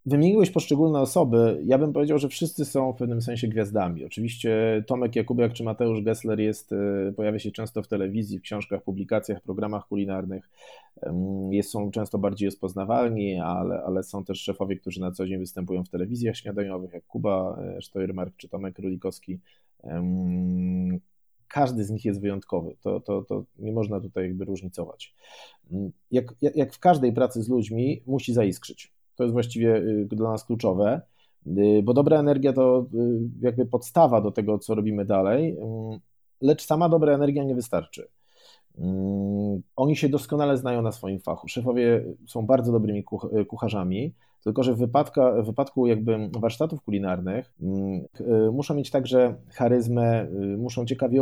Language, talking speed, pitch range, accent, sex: Polish, 145 wpm, 100-125 Hz, native, male